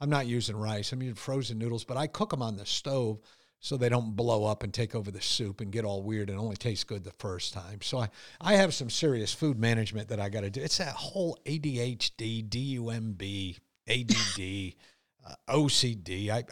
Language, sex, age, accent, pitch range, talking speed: English, male, 50-69, American, 115-185 Hz, 210 wpm